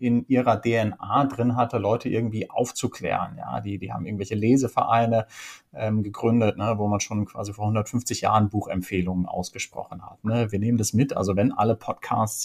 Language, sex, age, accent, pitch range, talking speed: German, male, 30-49, German, 105-130 Hz, 175 wpm